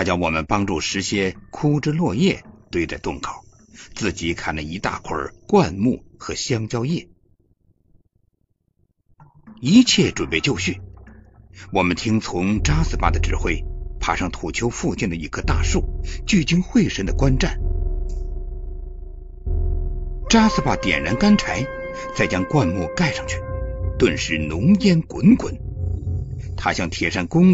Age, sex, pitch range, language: 60-79, male, 80-120 Hz, Chinese